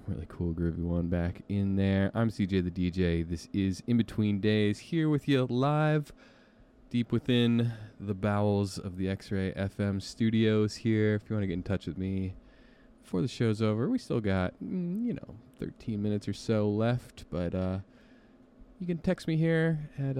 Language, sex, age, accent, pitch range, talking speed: English, male, 20-39, American, 95-125 Hz, 180 wpm